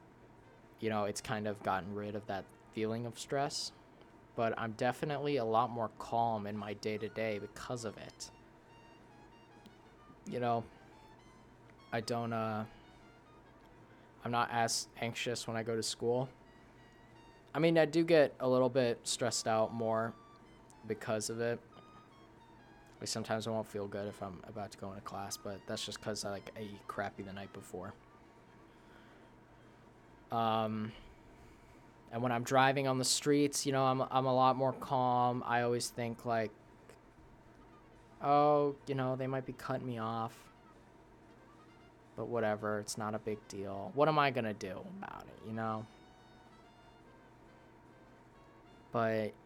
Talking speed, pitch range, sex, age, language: 150 wpm, 110-130 Hz, male, 20-39, English